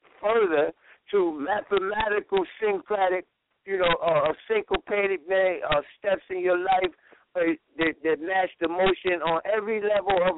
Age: 60-79